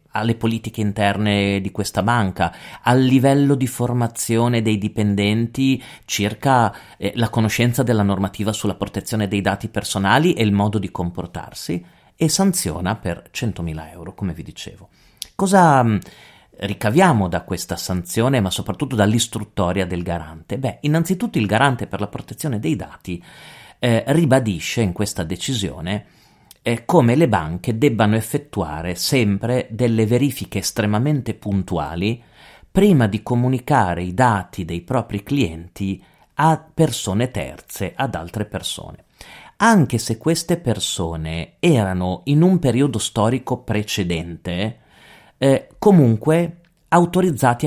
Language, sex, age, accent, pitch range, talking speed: Italian, male, 30-49, native, 100-130 Hz, 120 wpm